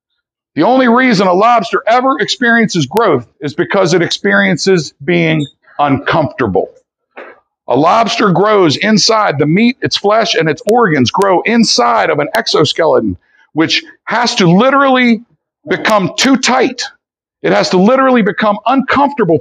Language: English